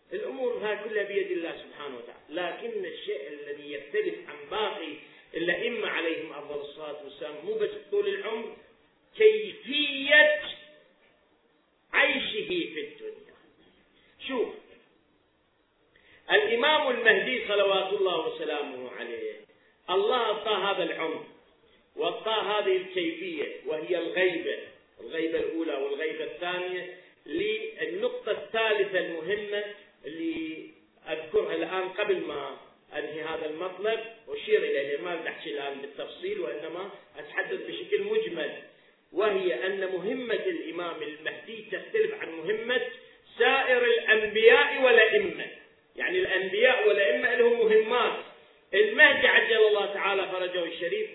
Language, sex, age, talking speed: Arabic, male, 40-59, 105 wpm